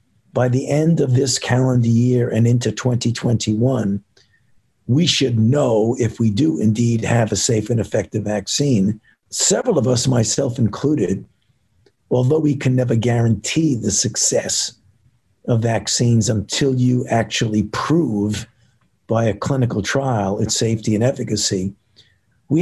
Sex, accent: male, American